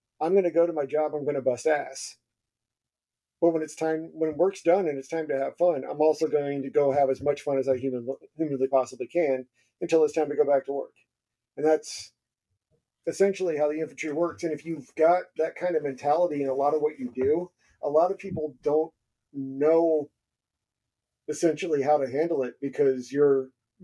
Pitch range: 135-160 Hz